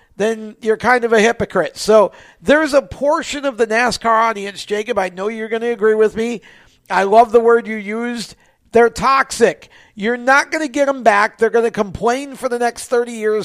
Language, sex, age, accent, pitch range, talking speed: English, male, 50-69, American, 195-255 Hz, 210 wpm